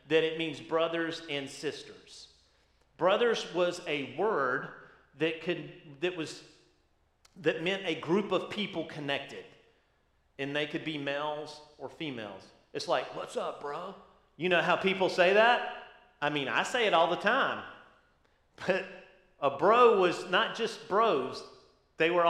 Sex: male